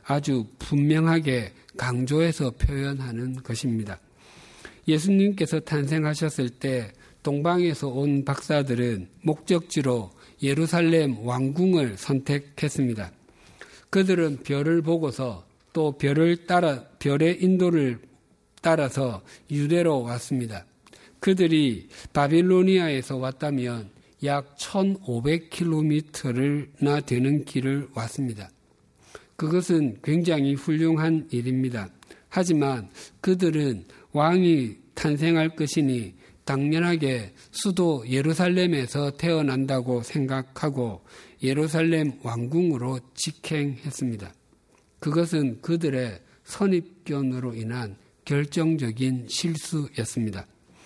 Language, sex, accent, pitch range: Korean, male, native, 125-160 Hz